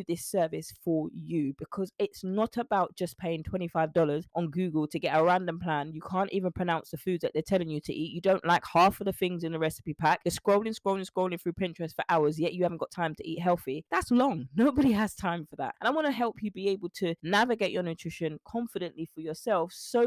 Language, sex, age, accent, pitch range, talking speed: English, female, 20-39, British, 160-205 Hz, 240 wpm